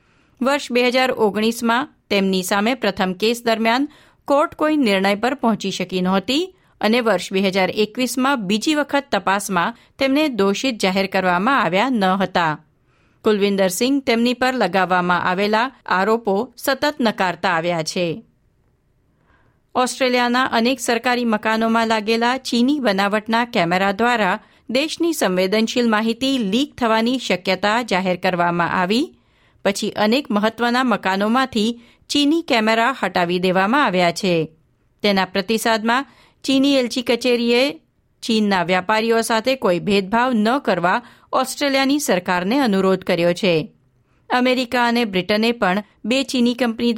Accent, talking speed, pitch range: native, 110 wpm, 195-250 Hz